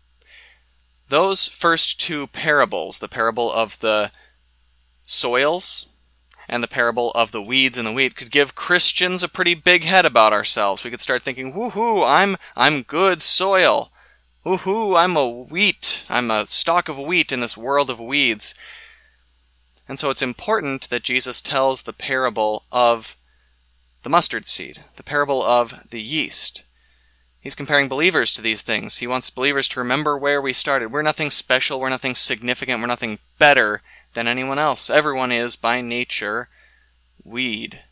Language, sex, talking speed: English, male, 155 wpm